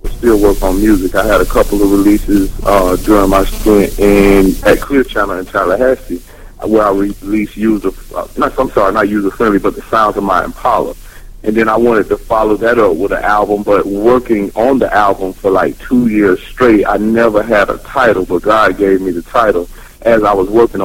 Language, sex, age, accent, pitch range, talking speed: English, male, 40-59, American, 95-115 Hz, 215 wpm